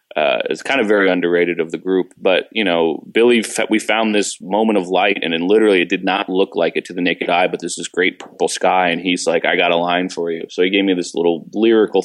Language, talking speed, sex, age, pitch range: English, 270 wpm, male, 30-49, 90-100 Hz